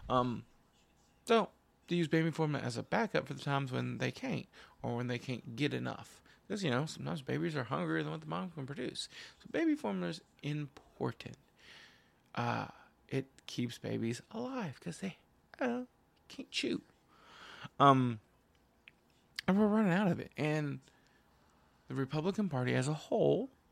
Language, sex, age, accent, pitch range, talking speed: English, male, 20-39, American, 120-160 Hz, 165 wpm